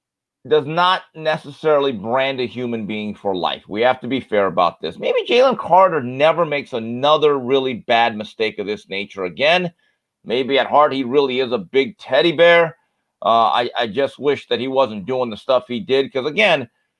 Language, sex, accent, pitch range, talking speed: English, male, American, 130-185 Hz, 190 wpm